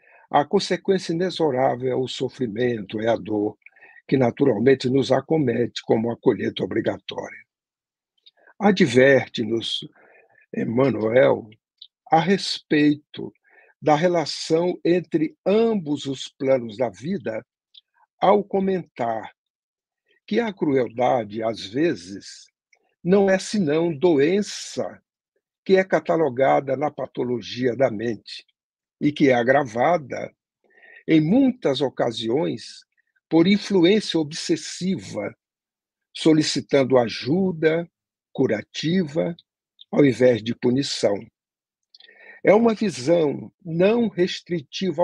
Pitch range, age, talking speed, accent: 125-185 Hz, 60-79, 90 wpm, Brazilian